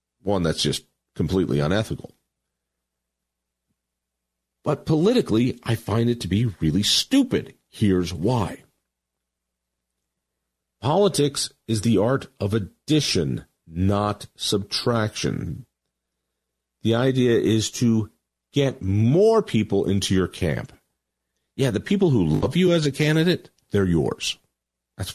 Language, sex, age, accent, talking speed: English, male, 50-69, American, 110 wpm